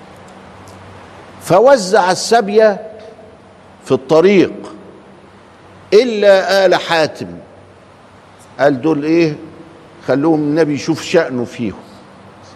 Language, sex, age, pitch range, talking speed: Arabic, male, 50-69, 135-195 Hz, 70 wpm